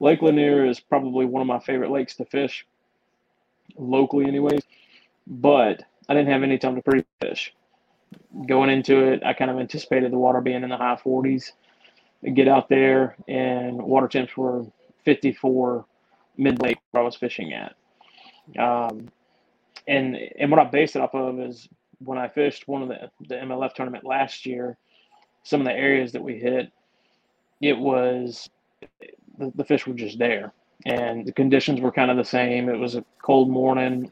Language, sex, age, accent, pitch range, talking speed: English, male, 30-49, American, 125-135 Hz, 180 wpm